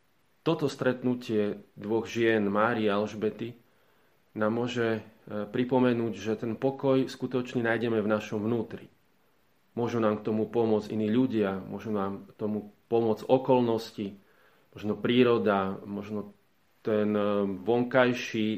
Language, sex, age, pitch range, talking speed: Slovak, male, 30-49, 105-120 Hz, 115 wpm